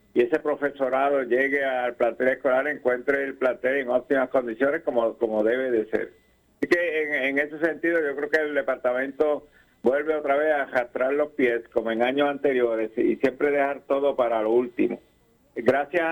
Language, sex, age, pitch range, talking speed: Spanish, male, 60-79, 125-155 Hz, 180 wpm